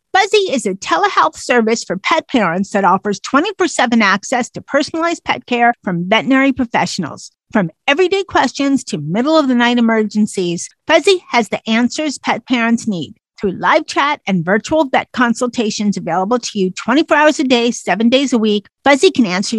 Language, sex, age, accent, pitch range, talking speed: English, female, 50-69, American, 210-280 Hz, 160 wpm